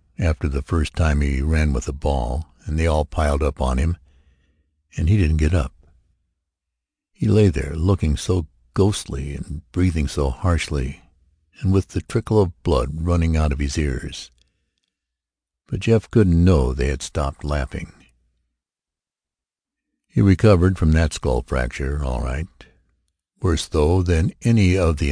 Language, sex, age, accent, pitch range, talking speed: English, male, 60-79, American, 70-90 Hz, 155 wpm